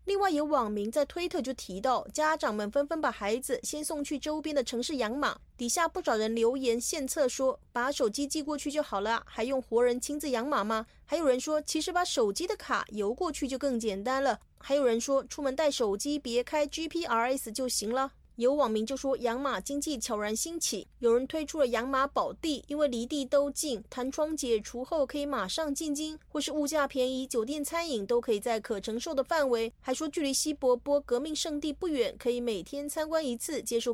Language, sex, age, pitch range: Chinese, female, 30-49, 235-300 Hz